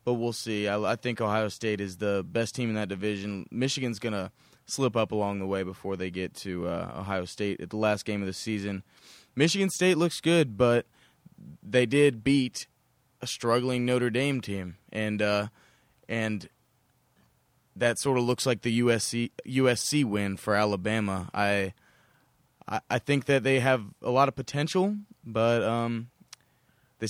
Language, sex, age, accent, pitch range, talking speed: English, male, 20-39, American, 105-130 Hz, 175 wpm